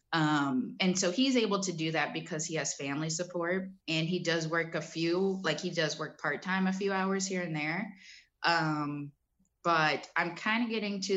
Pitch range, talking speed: 155-190 Hz, 200 wpm